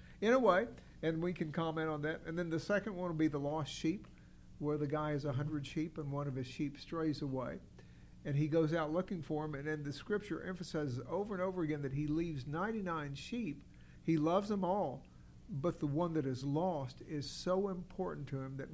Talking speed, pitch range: 225 wpm, 145-175 Hz